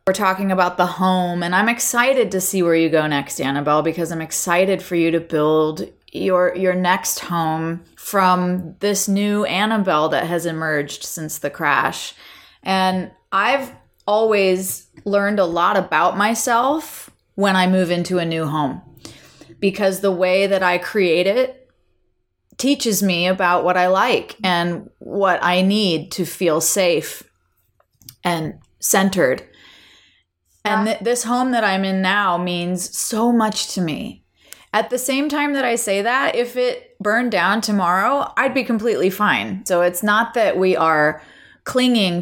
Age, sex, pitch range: 30-49, female, 155-200 Hz